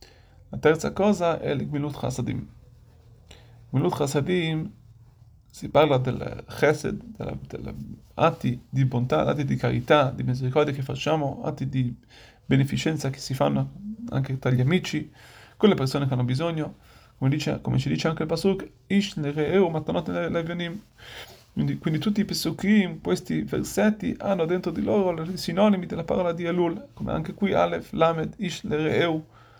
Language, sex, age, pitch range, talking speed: Italian, male, 30-49, 125-170 Hz, 150 wpm